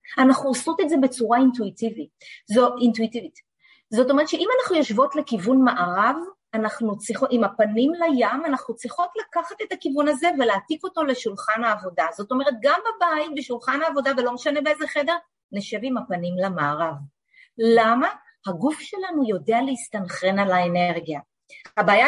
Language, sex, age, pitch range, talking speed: Hebrew, female, 30-49, 215-300 Hz, 140 wpm